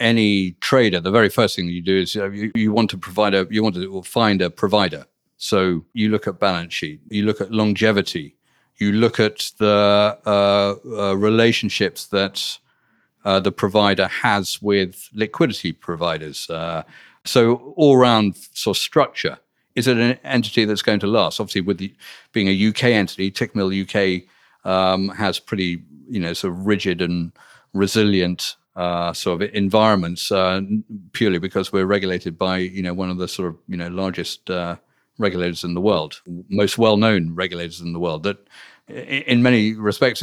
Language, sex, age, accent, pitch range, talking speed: English, male, 50-69, British, 90-110 Hz, 175 wpm